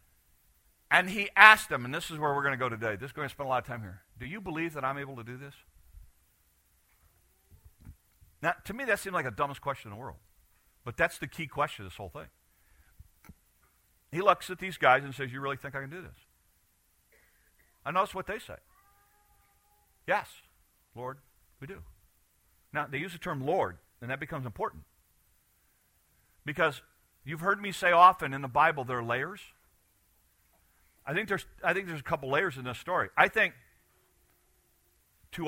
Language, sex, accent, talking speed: English, male, American, 190 wpm